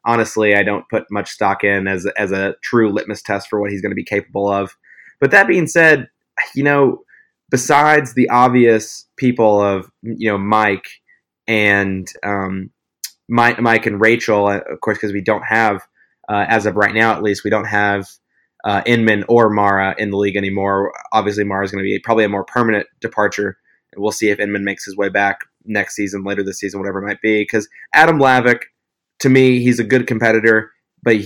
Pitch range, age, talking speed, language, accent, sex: 105-120 Hz, 20-39, 200 wpm, English, American, male